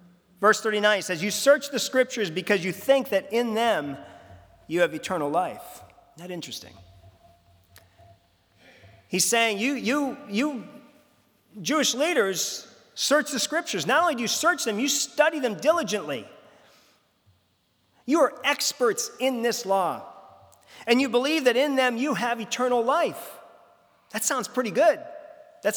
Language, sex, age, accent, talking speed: English, male, 40-59, American, 140 wpm